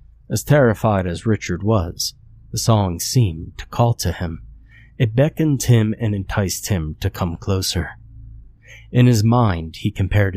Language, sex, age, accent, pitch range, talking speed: English, male, 30-49, American, 90-115 Hz, 150 wpm